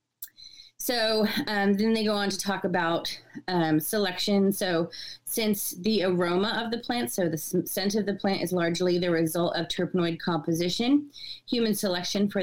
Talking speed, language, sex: 170 wpm, English, female